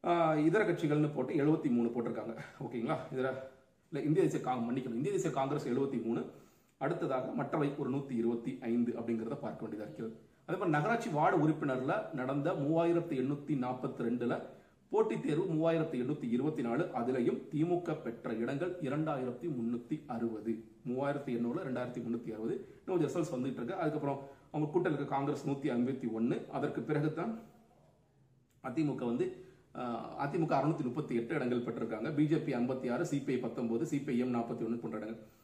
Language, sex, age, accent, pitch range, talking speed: Tamil, male, 40-59, native, 120-155 Hz, 80 wpm